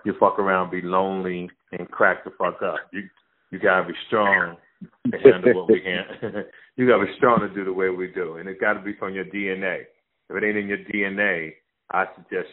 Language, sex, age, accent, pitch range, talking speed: English, male, 40-59, American, 90-105 Hz, 230 wpm